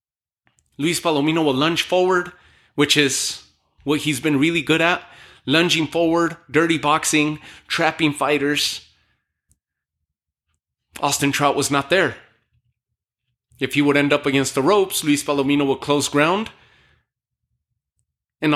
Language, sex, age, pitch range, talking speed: English, male, 30-49, 110-150 Hz, 125 wpm